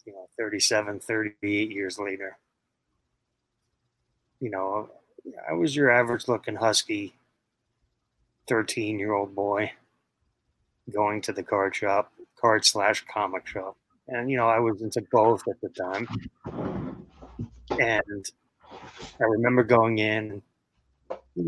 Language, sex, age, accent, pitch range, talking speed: English, male, 30-49, American, 100-120 Hz, 120 wpm